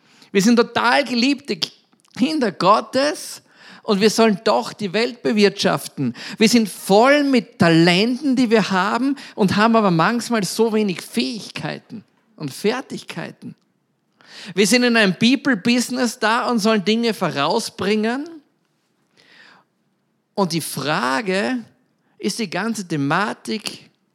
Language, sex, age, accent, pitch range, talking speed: German, male, 50-69, German, 170-225 Hz, 115 wpm